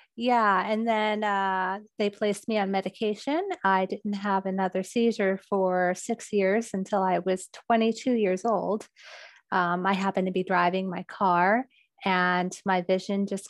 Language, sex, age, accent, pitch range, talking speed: English, female, 30-49, American, 190-215 Hz, 155 wpm